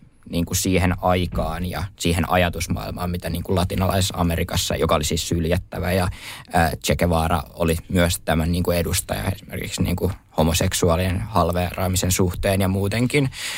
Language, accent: Finnish, native